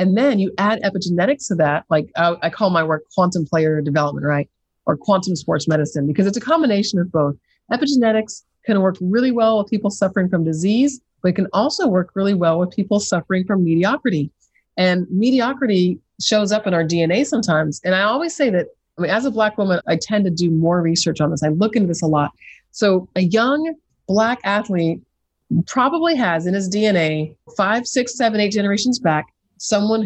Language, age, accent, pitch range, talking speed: English, 30-49, American, 170-225 Hz, 200 wpm